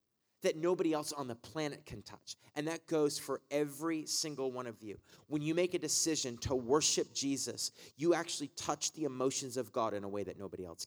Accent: American